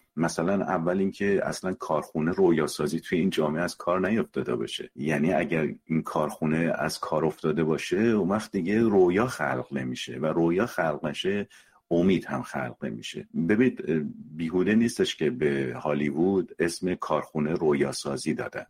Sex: male